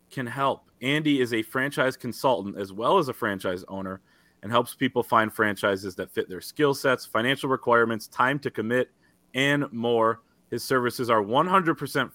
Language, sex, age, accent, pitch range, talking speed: English, male, 30-49, American, 105-130 Hz, 170 wpm